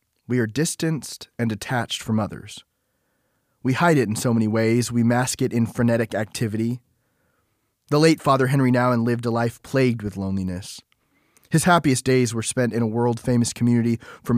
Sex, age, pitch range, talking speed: male, 20-39, 110-130 Hz, 170 wpm